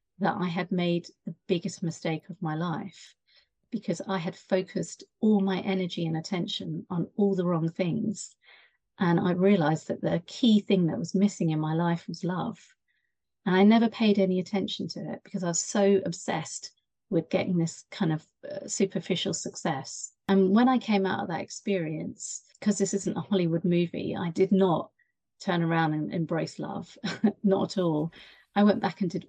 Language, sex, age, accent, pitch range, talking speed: English, female, 40-59, British, 170-200 Hz, 180 wpm